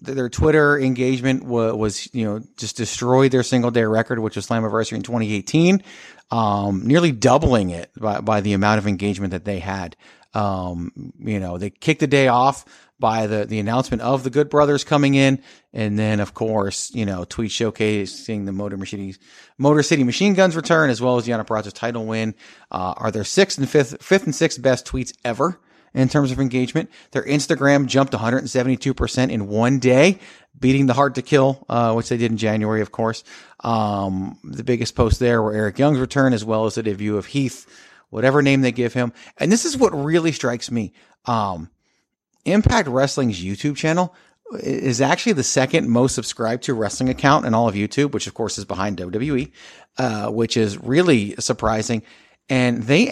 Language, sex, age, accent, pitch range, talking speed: English, male, 30-49, American, 110-135 Hz, 190 wpm